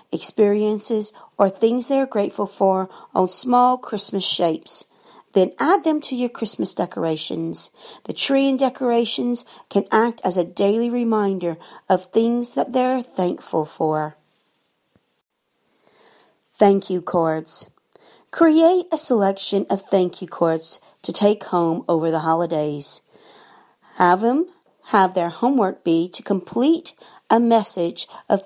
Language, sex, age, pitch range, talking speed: English, female, 50-69, 175-235 Hz, 130 wpm